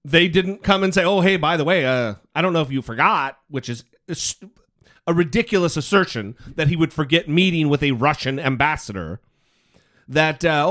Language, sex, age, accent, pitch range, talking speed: English, male, 40-59, American, 140-195 Hz, 185 wpm